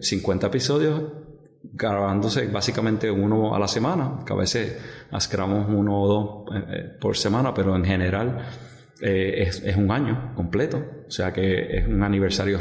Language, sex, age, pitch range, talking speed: English, male, 30-49, 95-115 Hz, 150 wpm